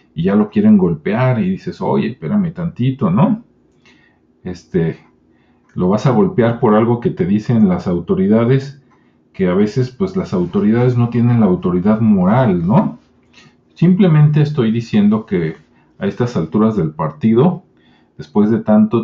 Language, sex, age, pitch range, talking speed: Spanish, male, 40-59, 115-190 Hz, 150 wpm